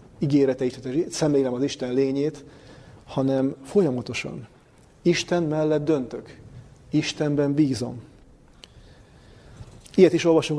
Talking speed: 85 wpm